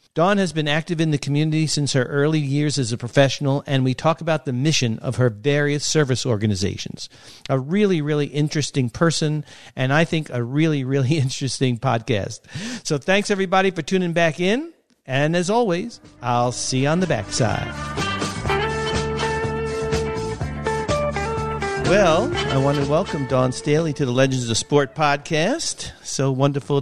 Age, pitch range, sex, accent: 50-69, 110-150 Hz, male, American